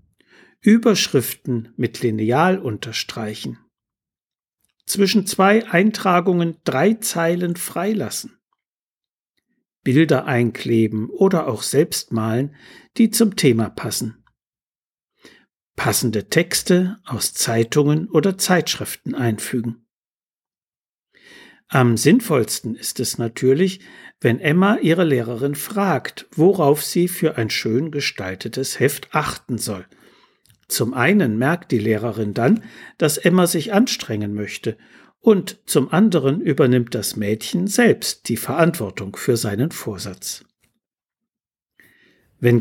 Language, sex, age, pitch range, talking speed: German, male, 60-79, 120-195 Hz, 100 wpm